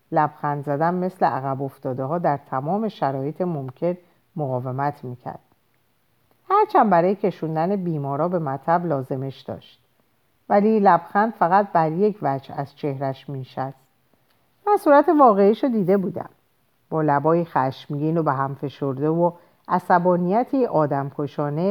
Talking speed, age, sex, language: 125 wpm, 50-69, female, Persian